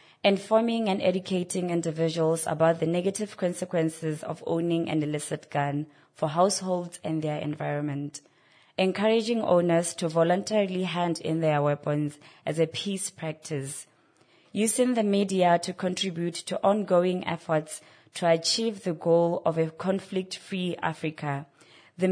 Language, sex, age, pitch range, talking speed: English, female, 20-39, 155-185 Hz, 125 wpm